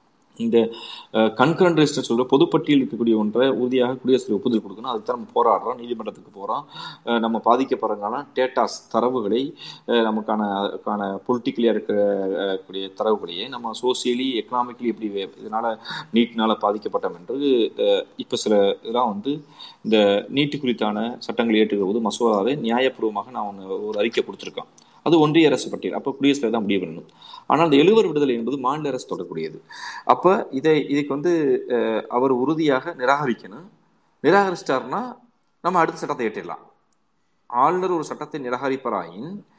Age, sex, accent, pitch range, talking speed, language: 30-49, male, native, 110-160 Hz, 125 wpm, Tamil